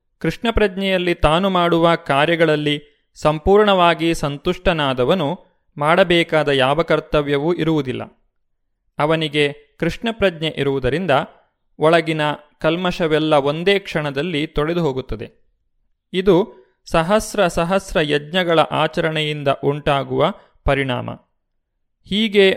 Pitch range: 145-180 Hz